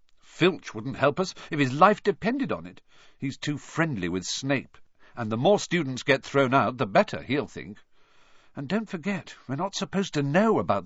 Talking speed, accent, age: 195 wpm, British, 50-69